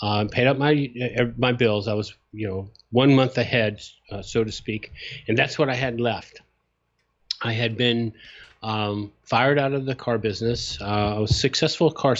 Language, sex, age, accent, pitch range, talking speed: English, male, 40-59, American, 105-120 Hz, 190 wpm